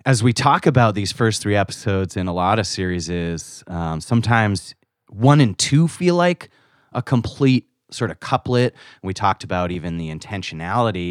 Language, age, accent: English, 30-49, American